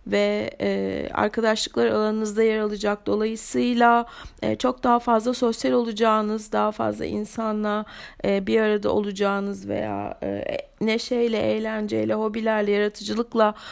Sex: female